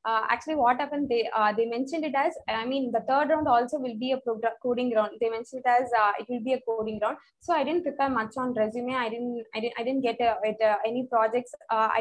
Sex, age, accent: female, 20-39, Indian